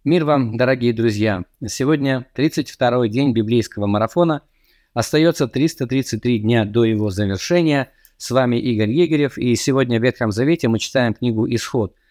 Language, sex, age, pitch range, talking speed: Russian, male, 20-39, 110-140 Hz, 140 wpm